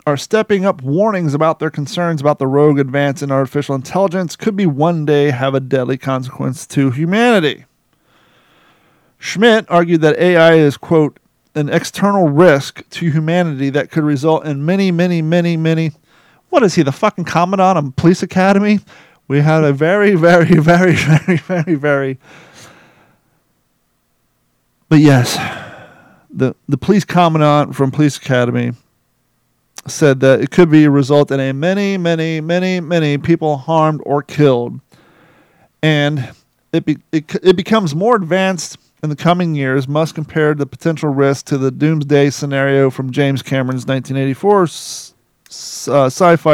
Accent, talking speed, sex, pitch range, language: American, 145 wpm, male, 140-175 Hz, English